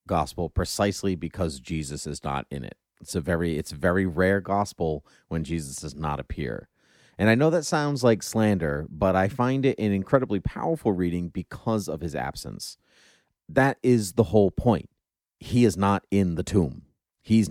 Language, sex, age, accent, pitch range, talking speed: English, male, 30-49, American, 85-115 Hz, 180 wpm